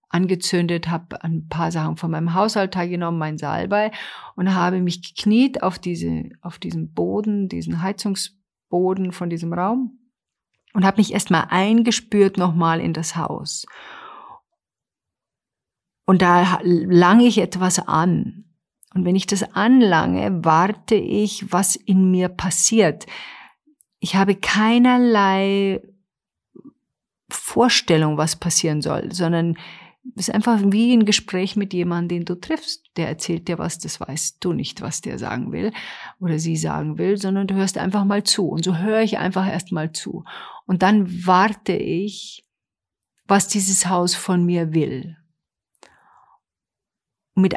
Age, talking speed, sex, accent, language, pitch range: 50-69, 140 wpm, female, German, German, 170-205 Hz